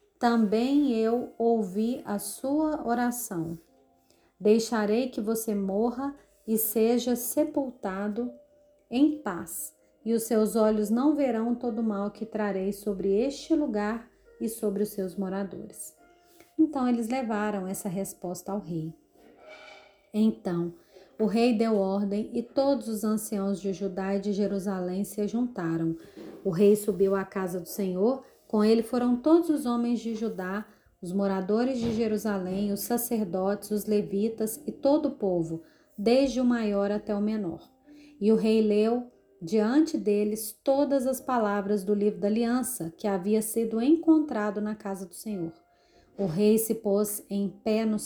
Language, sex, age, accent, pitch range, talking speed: Portuguese, female, 30-49, Brazilian, 200-240 Hz, 145 wpm